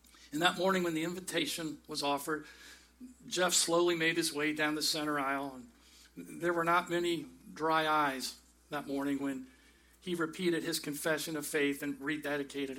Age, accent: 50-69, American